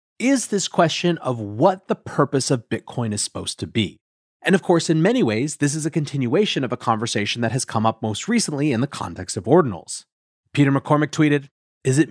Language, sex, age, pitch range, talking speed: English, male, 30-49, 115-170 Hz, 210 wpm